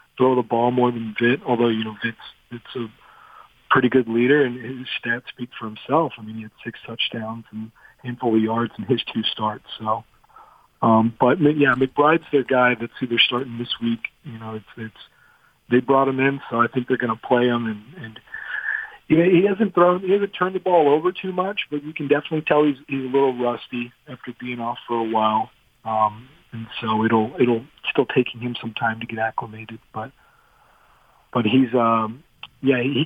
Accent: American